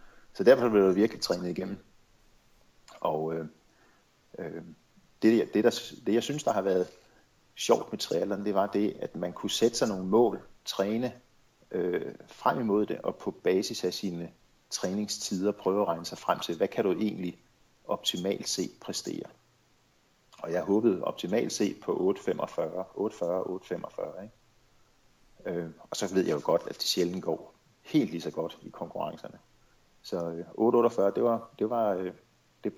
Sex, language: male, Danish